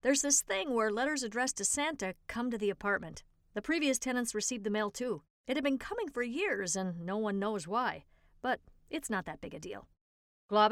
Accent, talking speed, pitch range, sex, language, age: American, 215 wpm, 210-280 Hz, female, English, 50-69